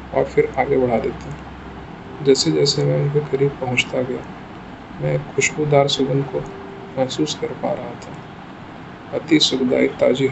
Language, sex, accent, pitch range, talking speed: Hindi, male, native, 130-140 Hz, 140 wpm